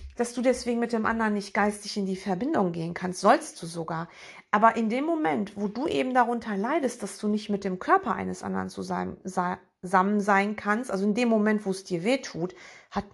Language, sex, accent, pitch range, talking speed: German, female, German, 190-280 Hz, 210 wpm